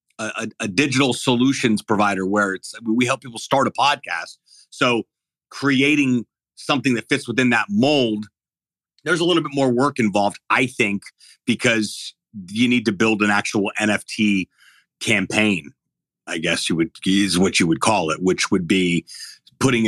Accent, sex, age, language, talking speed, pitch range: American, male, 40-59, English, 165 wpm, 105-130 Hz